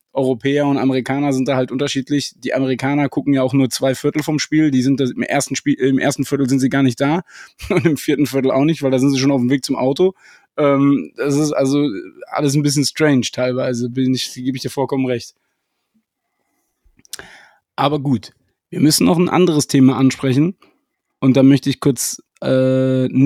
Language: German